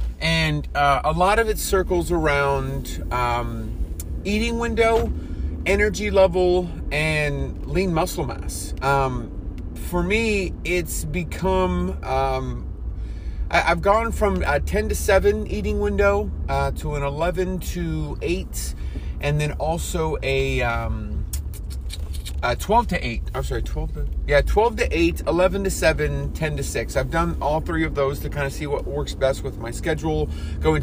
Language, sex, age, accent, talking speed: English, male, 30-49, American, 150 wpm